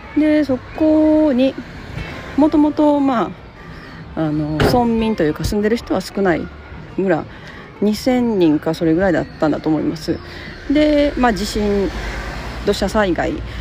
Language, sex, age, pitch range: Japanese, female, 40-59, 150-255 Hz